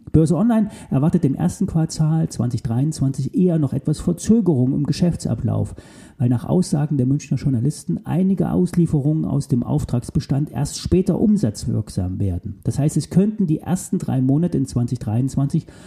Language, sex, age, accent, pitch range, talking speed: German, male, 40-59, German, 125-175 Hz, 145 wpm